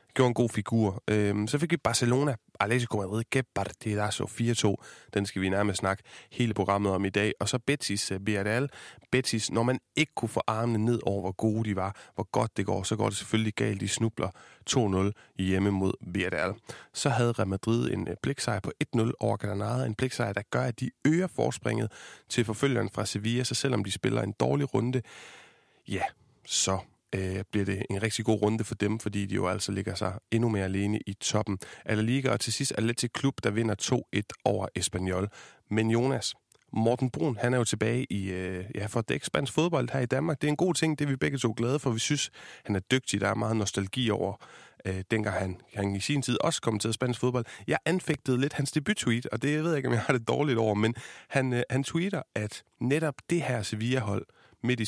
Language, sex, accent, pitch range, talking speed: Danish, male, native, 100-130 Hz, 215 wpm